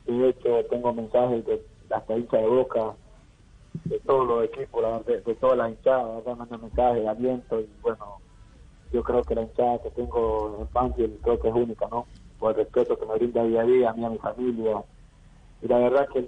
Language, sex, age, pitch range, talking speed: Spanish, male, 30-49, 115-135 Hz, 215 wpm